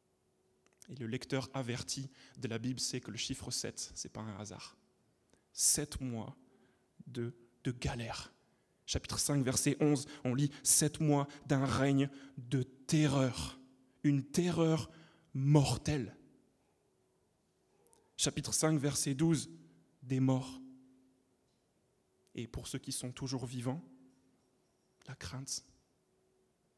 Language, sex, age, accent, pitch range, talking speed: French, male, 20-39, French, 125-150 Hz, 115 wpm